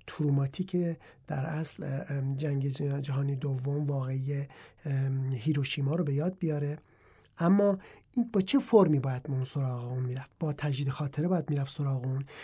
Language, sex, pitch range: English, male, 140-180 Hz